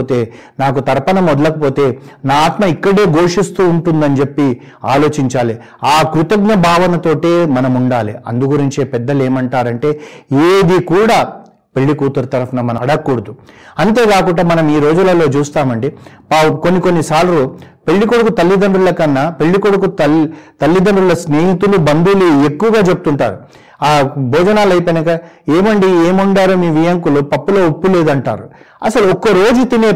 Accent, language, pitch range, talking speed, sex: native, Telugu, 145-190 Hz, 110 wpm, male